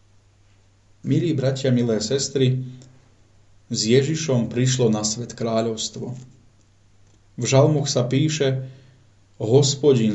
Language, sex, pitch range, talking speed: Slovak, male, 105-130 Hz, 90 wpm